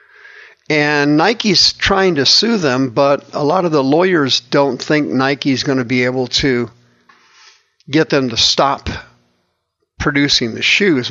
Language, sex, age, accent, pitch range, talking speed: English, male, 50-69, American, 125-155 Hz, 145 wpm